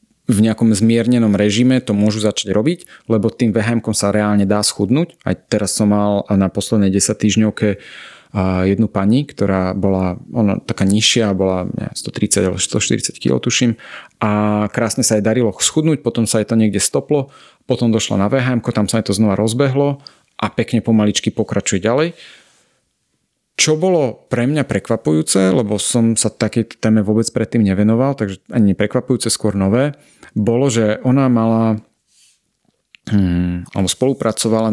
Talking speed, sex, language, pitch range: 150 wpm, male, Slovak, 105-120 Hz